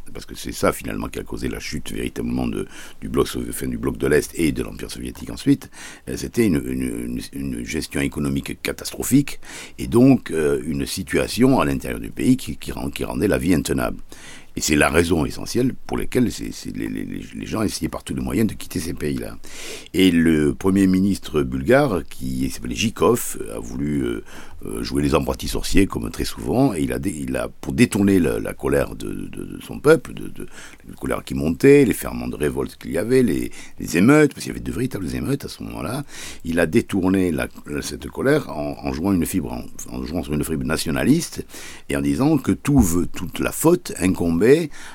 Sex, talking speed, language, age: male, 215 wpm, French, 60-79